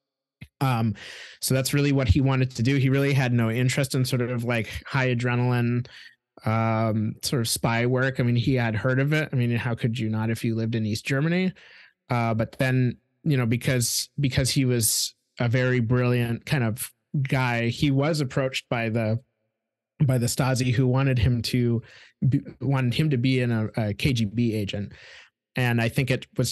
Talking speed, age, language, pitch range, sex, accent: 195 wpm, 20-39, English, 120-135 Hz, male, American